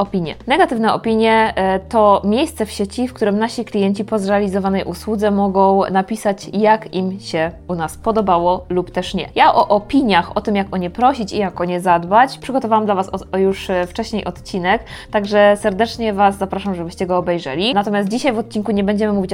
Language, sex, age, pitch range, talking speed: Polish, female, 20-39, 185-210 Hz, 180 wpm